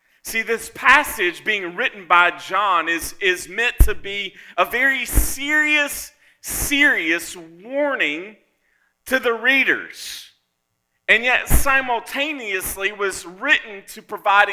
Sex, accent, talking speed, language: male, American, 110 wpm, English